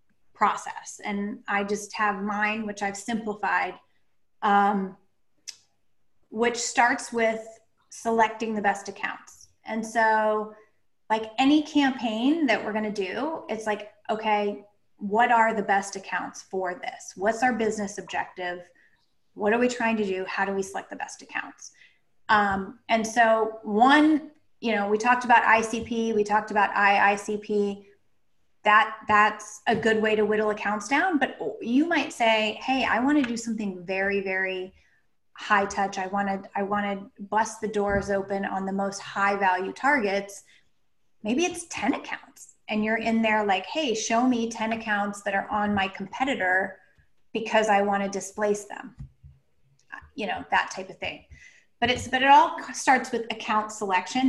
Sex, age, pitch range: female, 20-39, 200-230 Hz